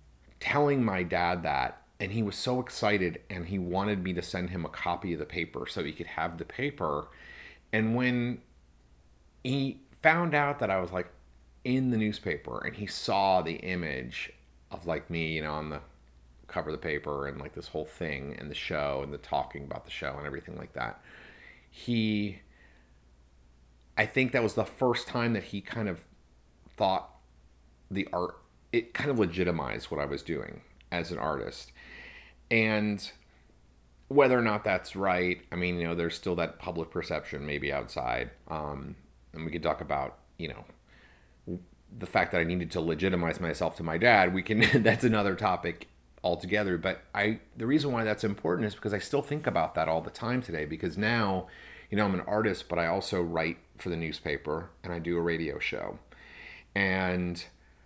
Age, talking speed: 40-59, 185 wpm